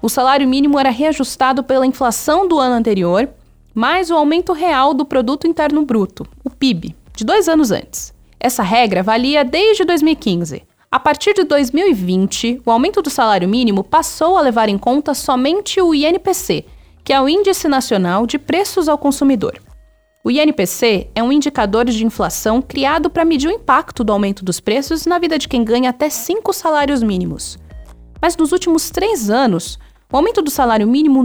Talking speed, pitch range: 175 wpm, 220-315 Hz